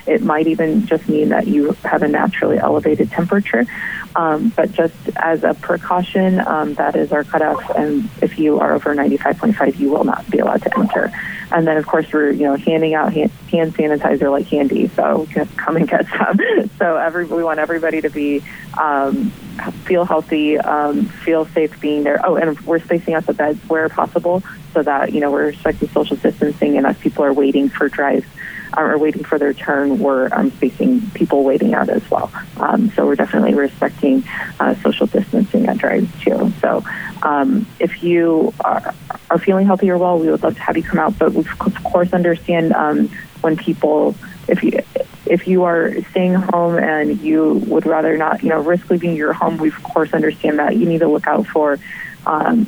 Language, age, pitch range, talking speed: English, 30-49, 150-180 Hz, 195 wpm